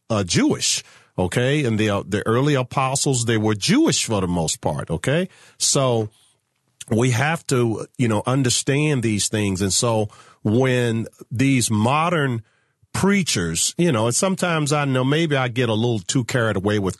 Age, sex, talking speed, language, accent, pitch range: 40-59, male, 165 wpm, English, American, 105-145 Hz